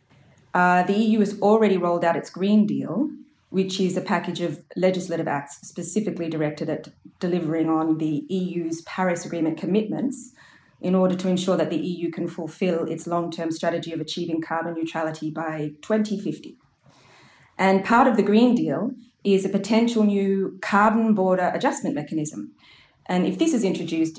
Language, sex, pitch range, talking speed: English, female, 165-205 Hz, 160 wpm